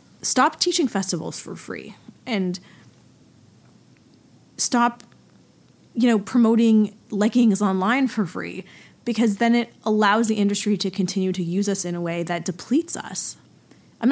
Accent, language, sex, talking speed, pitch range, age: American, English, female, 135 wpm, 185-225 Hz, 20-39